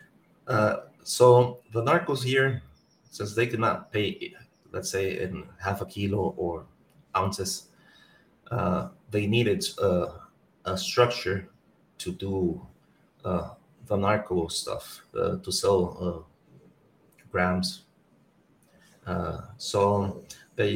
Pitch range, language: 95-110 Hz, English